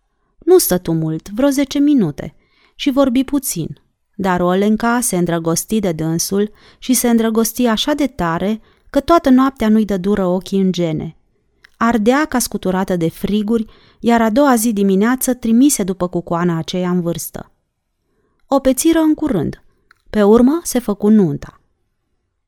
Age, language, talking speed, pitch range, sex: 30-49, Romanian, 145 wpm, 190-255 Hz, female